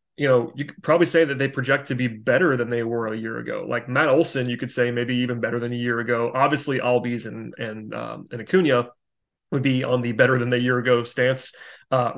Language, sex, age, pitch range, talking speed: English, male, 30-49, 120-135 Hz, 240 wpm